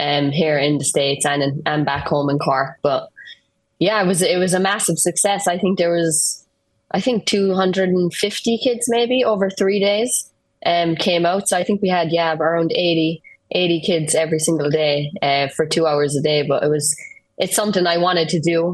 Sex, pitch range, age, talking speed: female, 145-165 Hz, 20-39, 215 wpm